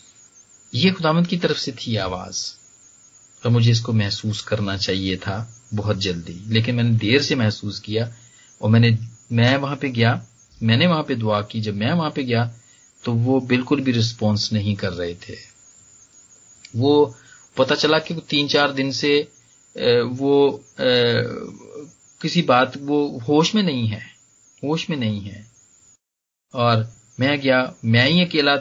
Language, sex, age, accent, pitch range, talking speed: Hindi, male, 40-59, native, 105-130 Hz, 150 wpm